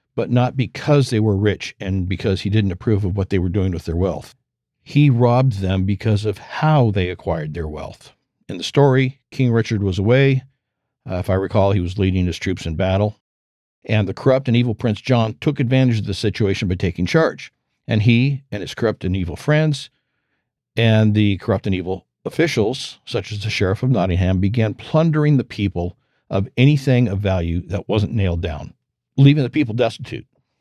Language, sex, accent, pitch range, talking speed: English, male, American, 95-130 Hz, 190 wpm